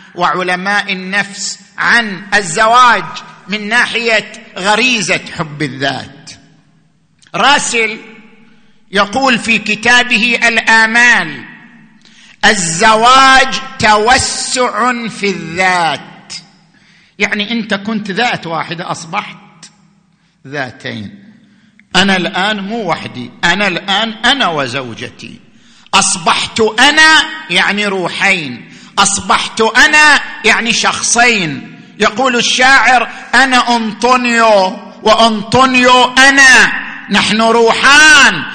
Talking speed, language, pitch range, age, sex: 75 wpm, Arabic, 185-240 Hz, 50-69, male